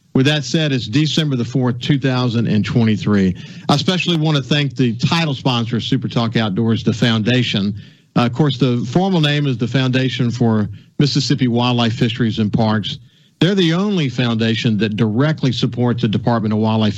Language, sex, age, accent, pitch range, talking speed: English, male, 50-69, American, 110-145 Hz, 170 wpm